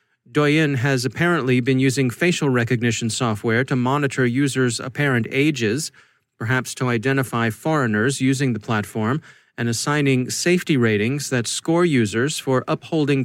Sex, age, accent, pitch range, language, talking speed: male, 30-49, American, 125-160 Hz, English, 130 wpm